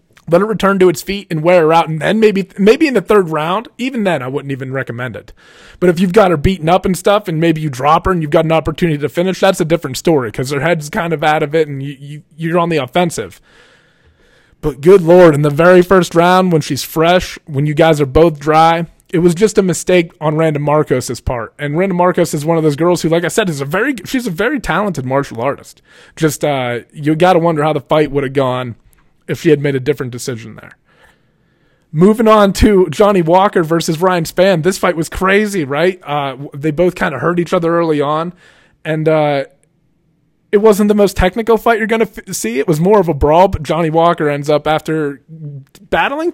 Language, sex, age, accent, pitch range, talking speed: English, male, 20-39, American, 150-185 Hz, 235 wpm